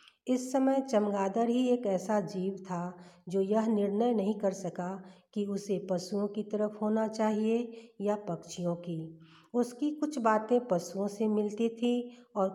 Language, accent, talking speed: Hindi, native, 155 wpm